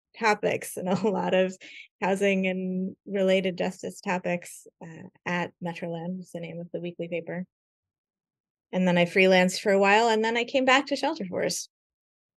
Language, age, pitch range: English, 20-39, 170-200 Hz